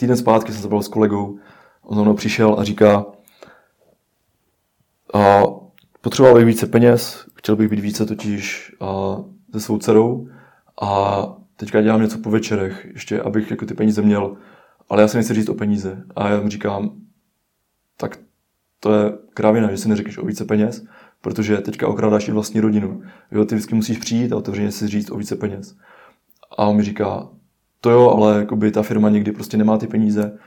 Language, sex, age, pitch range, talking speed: Czech, male, 20-39, 105-110 Hz, 185 wpm